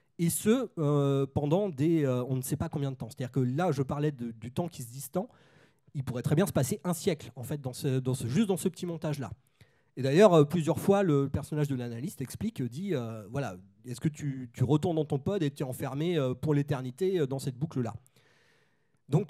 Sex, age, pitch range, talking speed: male, 30-49, 130-165 Hz, 230 wpm